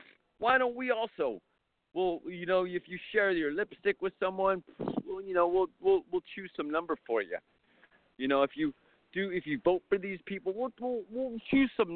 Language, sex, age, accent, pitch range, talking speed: English, male, 40-59, American, 140-210 Hz, 205 wpm